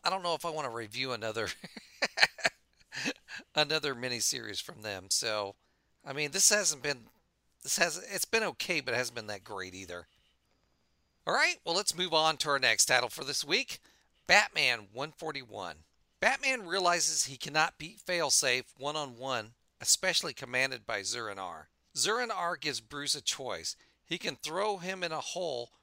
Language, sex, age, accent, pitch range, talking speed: English, male, 40-59, American, 120-165 Hz, 160 wpm